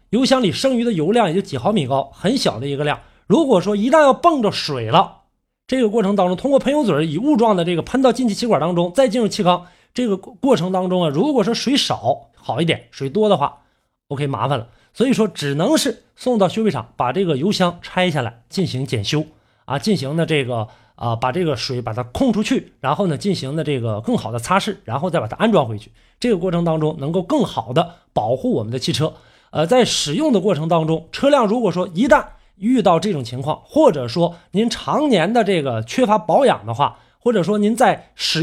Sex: male